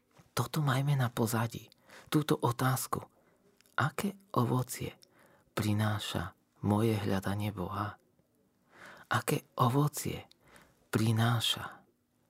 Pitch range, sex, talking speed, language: 100-125 Hz, male, 75 wpm, Slovak